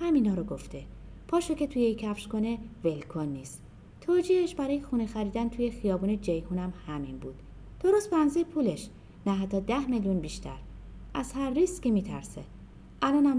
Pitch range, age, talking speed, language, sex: 180-275 Hz, 30-49, 150 wpm, Persian, female